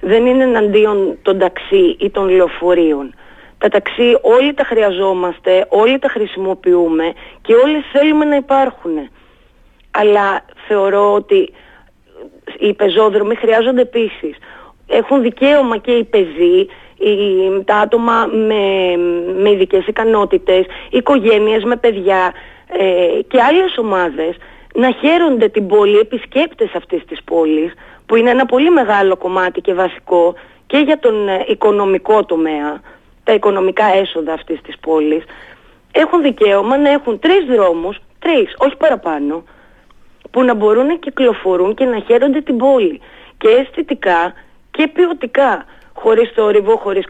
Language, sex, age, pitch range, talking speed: Greek, female, 30-49, 190-265 Hz, 125 wpm